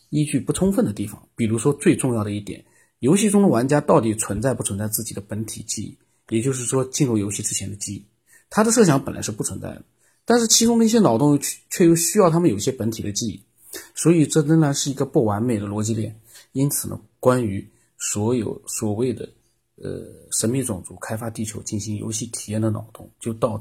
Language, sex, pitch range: Chinese, male, 110-130 Hz